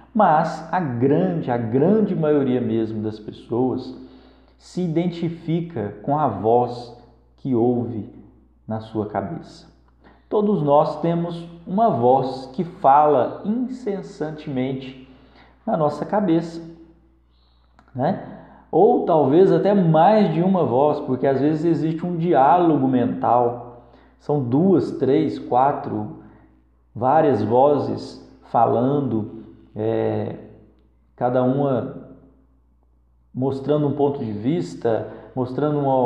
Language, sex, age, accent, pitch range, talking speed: Portuguese, male, 50-69, Brazilian, 115-160 Hz, 100 wpm